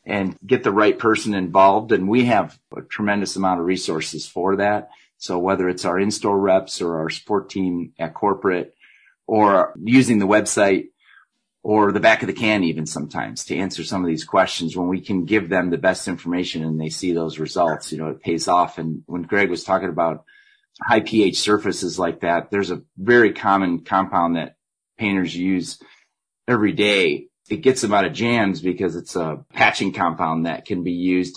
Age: 30-49